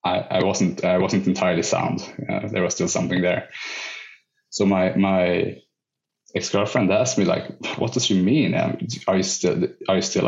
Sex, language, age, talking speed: male, English, 20-39, 180 wpm